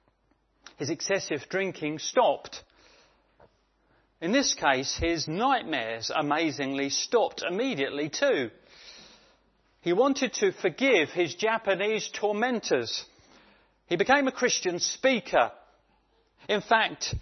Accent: British